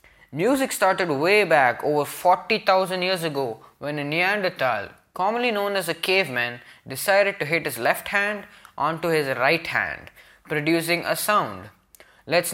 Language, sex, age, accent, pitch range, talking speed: English, male, 20-39, Indian, 135-185 Hz, 145 wpm